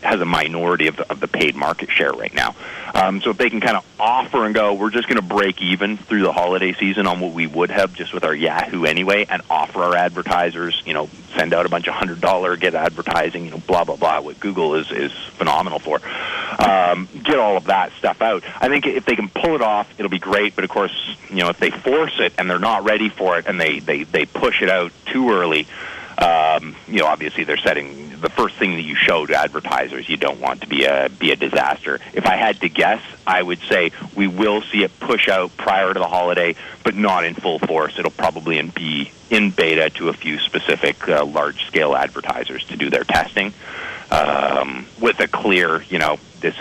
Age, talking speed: 40-59, 230 wpm